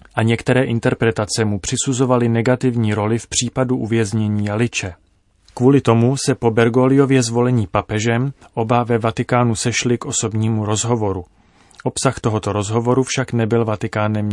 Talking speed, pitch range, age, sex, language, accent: 130 wpm, 105-120 Hz, 30-49, male, Czech, native